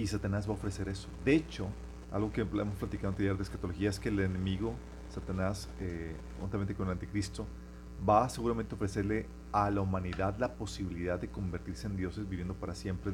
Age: 40-59